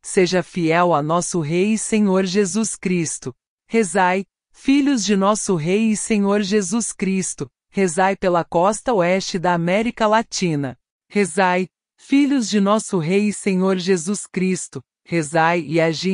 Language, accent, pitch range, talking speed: English, Brazilian, 180-220 Hz, 140 wpm